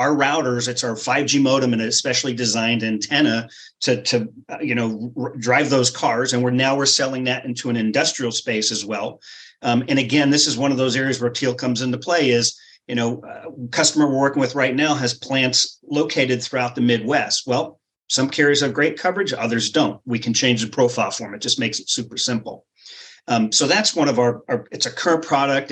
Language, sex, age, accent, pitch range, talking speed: English, male, 40-59, American, 115-140 Hz, 215 wpm